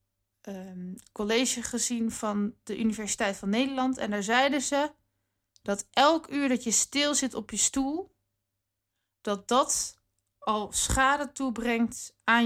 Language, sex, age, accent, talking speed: Dutch, female, 20-39, Dutch, 130 wpm